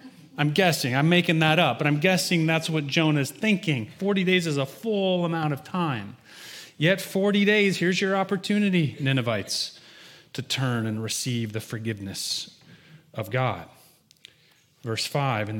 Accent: American